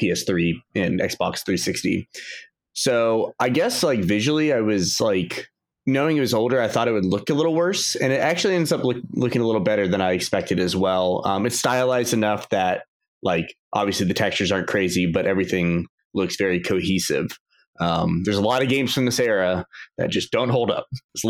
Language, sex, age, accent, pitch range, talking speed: English, male, 20-39, American, 100-135 Hz, 200 wpm